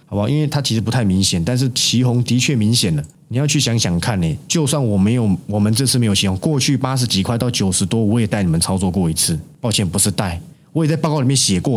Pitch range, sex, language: 100-140 Hz, male, Chinese